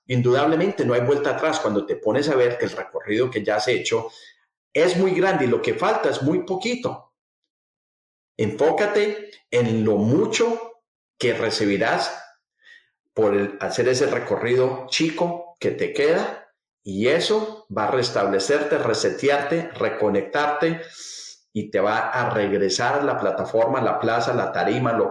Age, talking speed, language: 40-59, 150 wpm, English